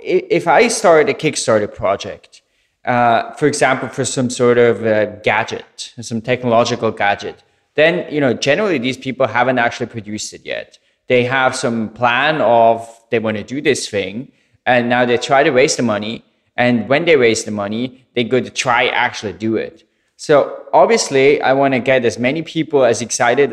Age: 20-39